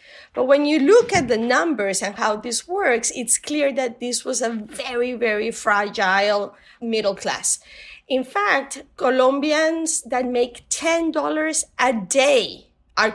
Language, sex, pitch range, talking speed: English, female, 225-290 Hz, 140 wpm